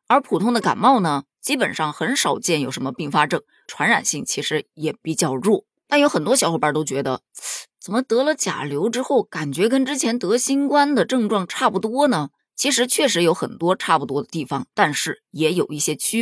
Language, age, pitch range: Chinese, 20-39, 155-240 Hz